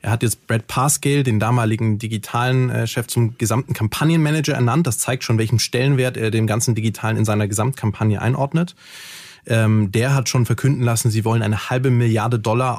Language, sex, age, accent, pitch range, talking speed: German, male, 20-39, German, 110-135 Hz, 175 wpm